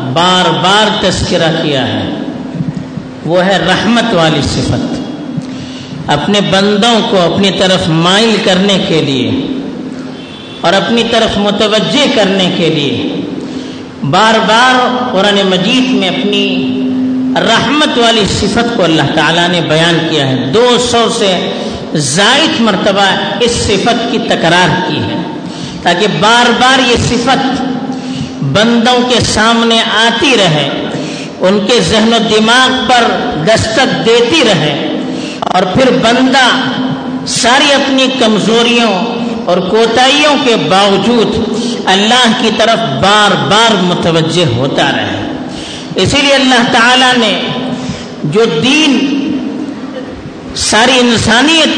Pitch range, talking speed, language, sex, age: 190-245 Hz, 115 wpm, Urdu, female, 50-69